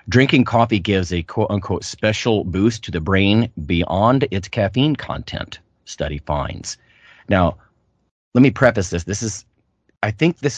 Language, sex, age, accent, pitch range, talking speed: English, male, 30-49, American, 80-110 Hz, 150 wpm